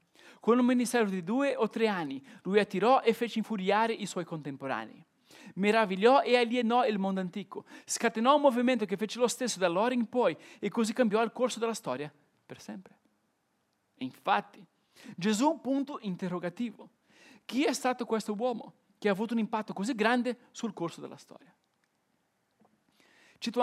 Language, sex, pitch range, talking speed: Italian, male, 190-245 Hz, 160 wpm